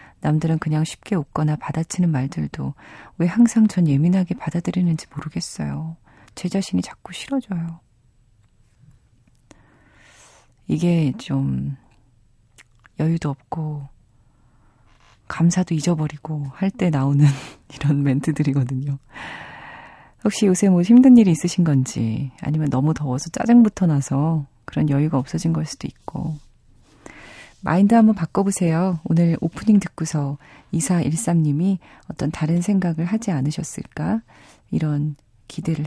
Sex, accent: female, native